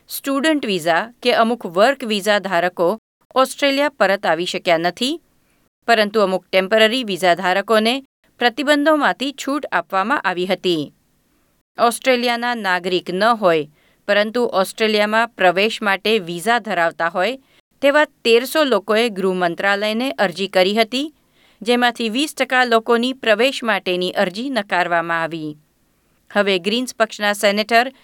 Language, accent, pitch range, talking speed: Gujarati, native, 185-235 Hz, 110 wpm